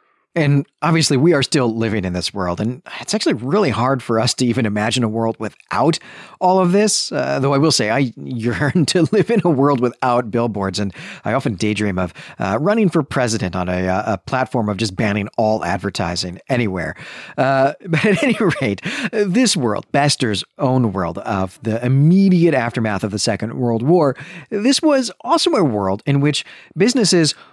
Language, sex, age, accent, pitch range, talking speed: English, male, 40-59, American, 110-170 Hz, 185 wpm